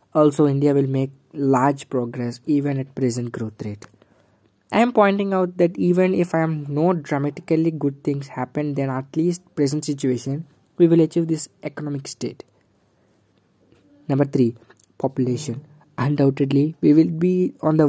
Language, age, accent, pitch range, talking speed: English, 20-39, Indian, 130-160 Hz, 150 wpm